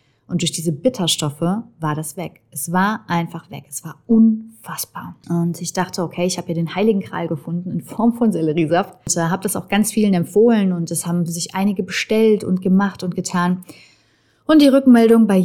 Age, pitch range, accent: 30-49, 170-205 Hz, German